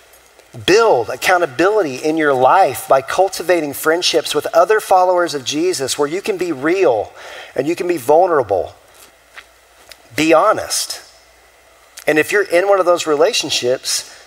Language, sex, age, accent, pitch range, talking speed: English, male, 40-59, American, 130-185 Hz, 140 wpm